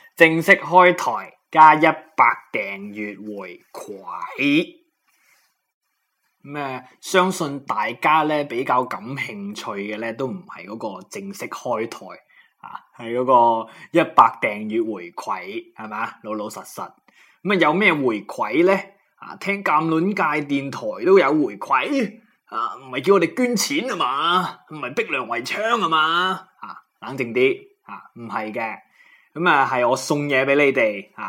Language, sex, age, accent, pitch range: Chinese, male, 20-39, native, 130-195 Hz